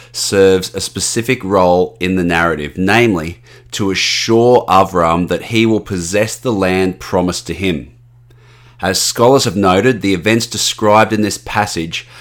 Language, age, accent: English, 30-49, Australian